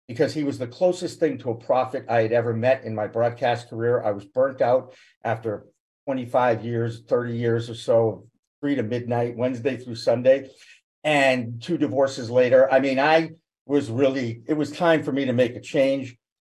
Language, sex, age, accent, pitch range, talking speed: English, male, 50-69, American, 120-155 Hz, 190 wpm